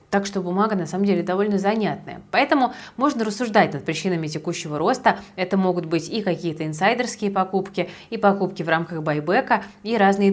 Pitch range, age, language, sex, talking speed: 170-225 Hz, 20-39, Russian, female, 170 wpm